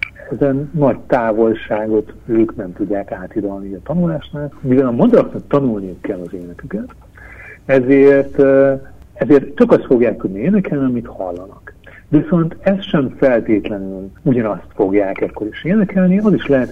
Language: Hungarian